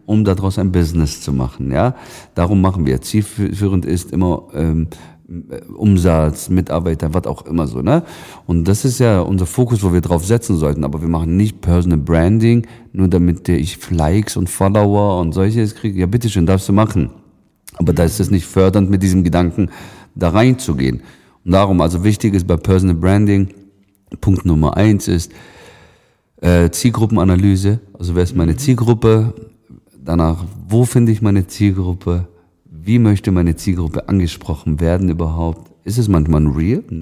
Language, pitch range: German, 85-110 Hz